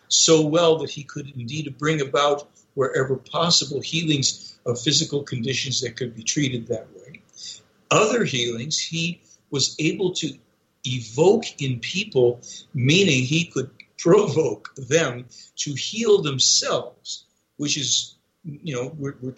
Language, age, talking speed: English, 60-79, 135 wpm